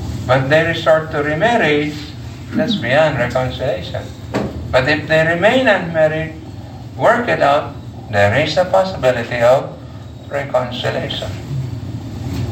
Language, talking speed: Filipino, 105 wpm